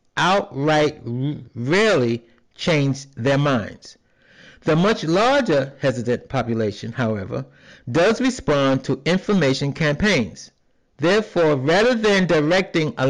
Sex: male